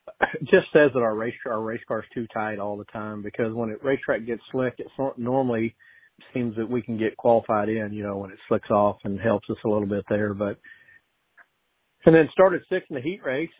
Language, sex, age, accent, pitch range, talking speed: English, male, 40-59, American, 110-130 Hz, 220 wpm